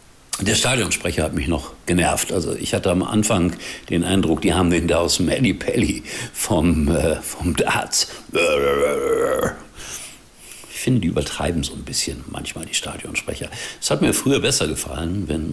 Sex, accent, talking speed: male, German, 160 wpm